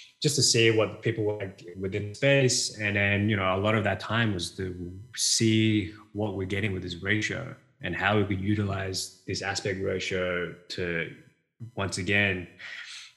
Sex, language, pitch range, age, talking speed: male, English, 90-105 Hz, 20-39, 175 wpm